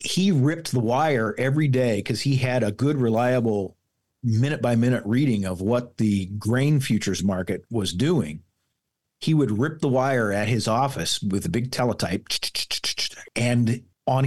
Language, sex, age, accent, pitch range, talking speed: English, male, 50-69, American, 105-130 Hz, 150 wpm